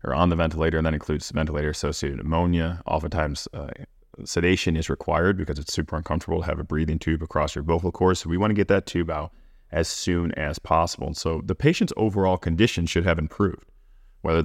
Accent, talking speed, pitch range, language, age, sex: American, 200 wpm, 80-95 Hz, English, 30-49, male